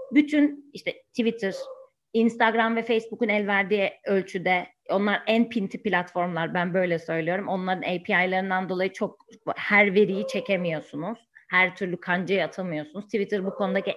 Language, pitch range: Turkish, 175-230 Hz